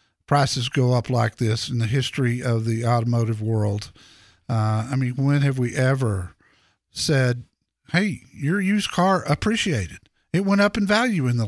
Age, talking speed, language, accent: 50-69, 165 wpm, English, American